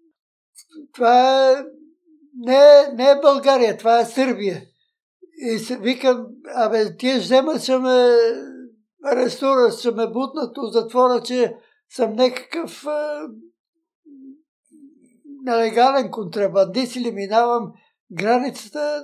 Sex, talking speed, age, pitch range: male, 100 wpm, 60-79, 240-300 Hz